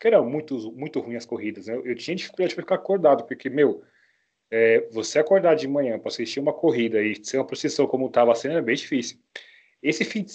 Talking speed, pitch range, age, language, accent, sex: 220 wpm, 120-170 Hz, 20-39, Portuguese, Brazilian, male